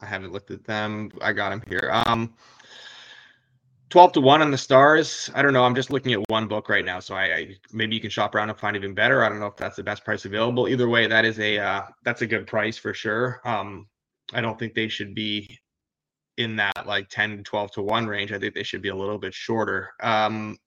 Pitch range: 105-125 Hz